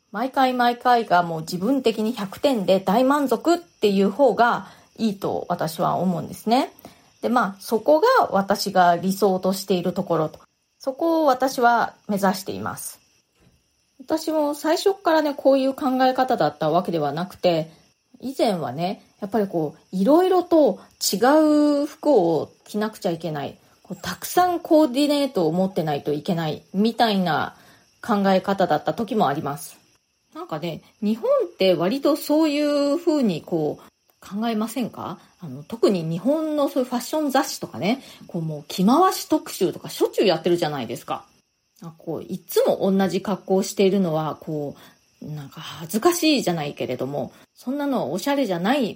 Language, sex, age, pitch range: Japanese, female, 20-39, 180-280 Hz